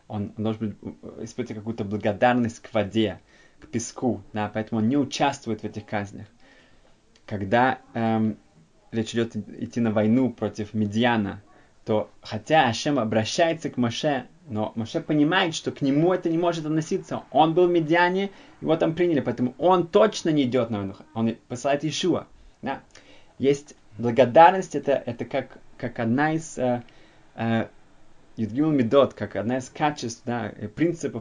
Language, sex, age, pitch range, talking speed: Russian, male, 20-39, 110-135 Hz, 150 wpm